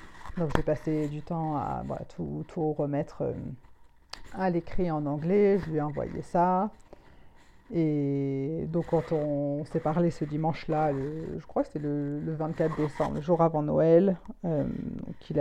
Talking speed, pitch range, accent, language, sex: 170 wpm, 155-175 Hz, French, French, female